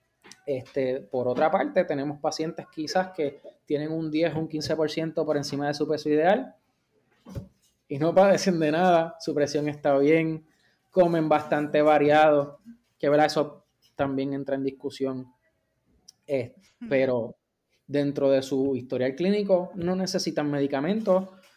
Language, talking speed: Spanish, 135 wpm